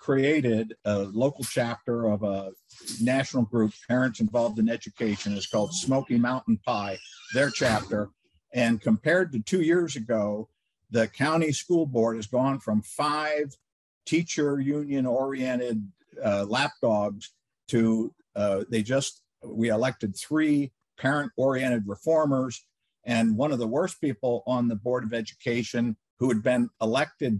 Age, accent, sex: 50-69, American, male